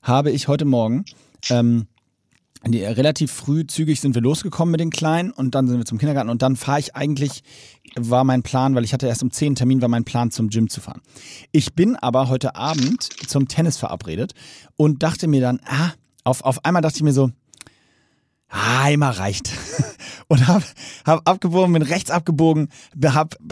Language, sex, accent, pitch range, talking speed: German, male, German, 120-155 Hz, 185 wpm